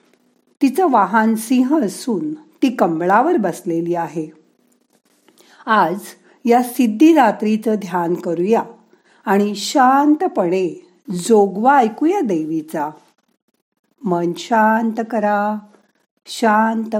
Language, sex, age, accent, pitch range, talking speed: Marathi, female, 50-69, native, 190-235 Hz, 60 wpm